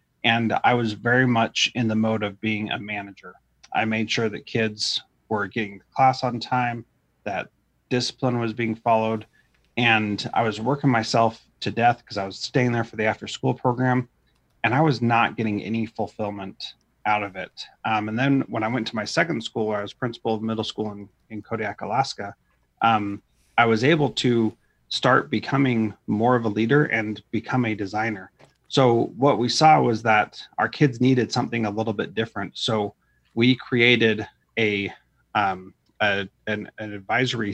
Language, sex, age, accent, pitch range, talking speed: English, male, 30-49, American, 105-125 Hz, 180 wpm